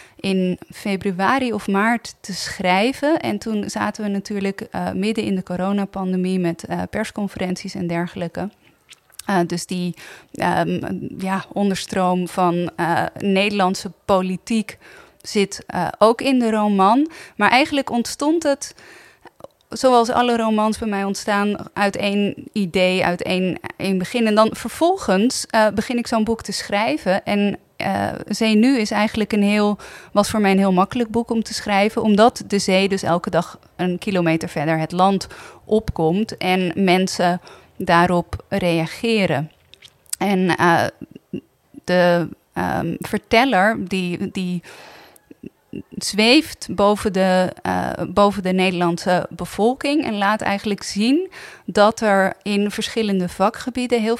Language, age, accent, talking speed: Dutch, 20-39, Dutch, 135 wpm